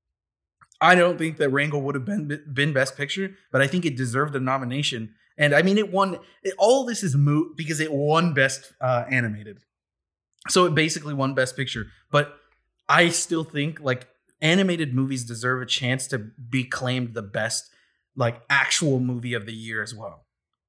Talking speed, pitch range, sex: 185 wpm, 120-155 Hz, male